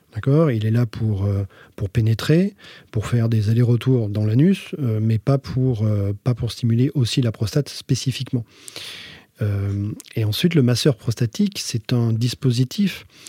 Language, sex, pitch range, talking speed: French, male, 120-150 Hz, 135 wpm